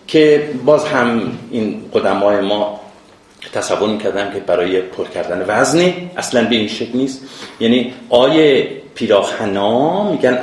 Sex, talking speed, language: male, 130 wpm, Persian